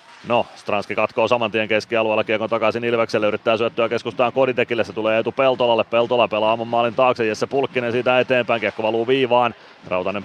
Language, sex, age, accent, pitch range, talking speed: Finnish, male, 30-49, native, 110-130 Hz, 170 wpm